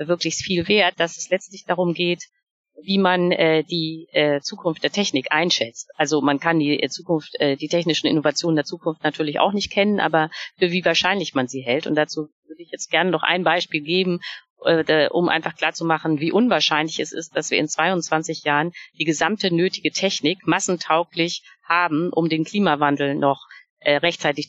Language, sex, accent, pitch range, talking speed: German, female, German, 145-175 Hz, 165 wpm